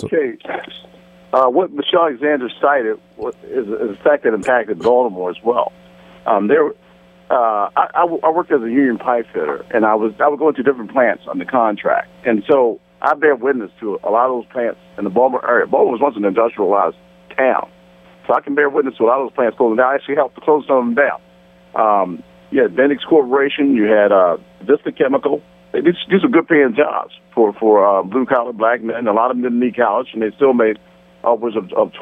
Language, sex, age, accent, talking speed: English, male, 50-69, American, 215 wpm